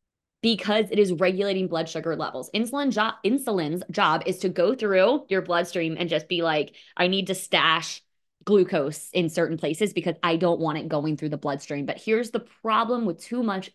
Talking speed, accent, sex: 190 wpm, American, female